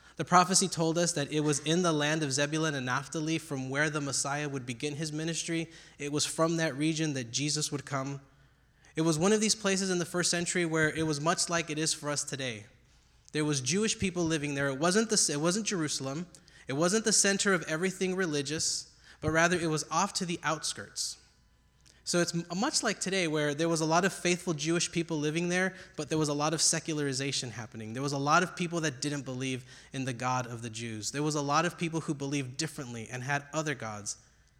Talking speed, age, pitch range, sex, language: 225 wpm, 20-39, 135-170 Hz, male, English